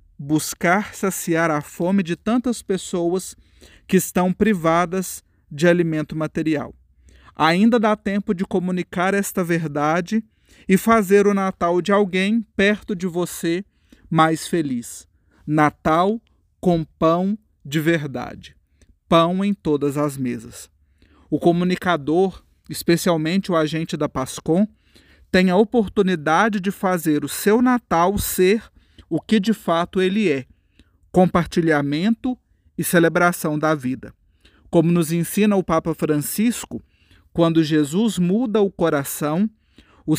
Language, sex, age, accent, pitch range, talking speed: Portuguese, male, 40-59, Brazilian, 150-200 Hz, 120 wpm